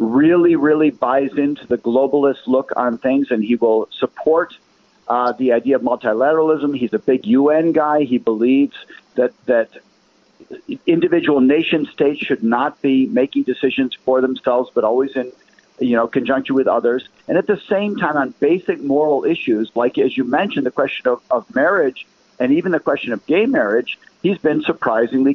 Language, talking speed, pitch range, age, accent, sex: English, 175 wpm, 125-175 Hz, 50-69, American, male